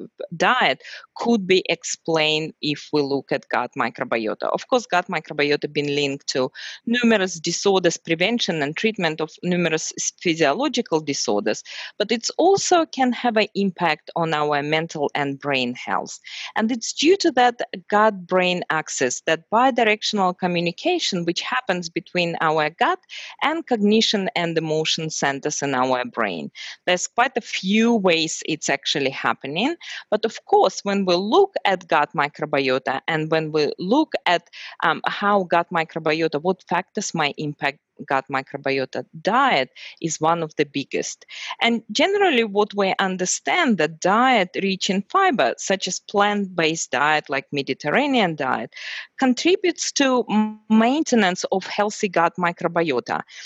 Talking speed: 140 wpm